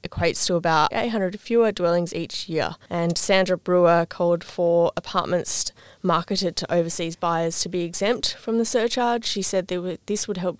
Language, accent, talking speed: English, Australian, 165 wpm